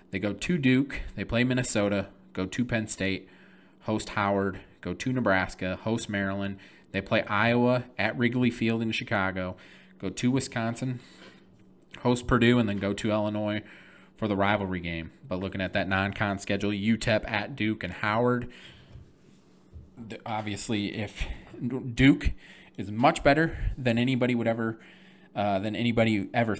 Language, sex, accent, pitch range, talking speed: English, male, American, 100-120 Hz, 145 wpm